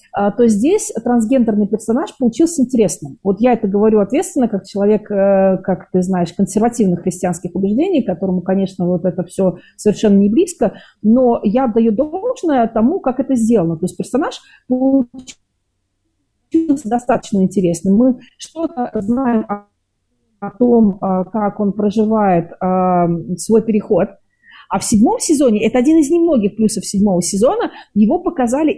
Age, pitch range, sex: 40-59, 190-245 Hz, female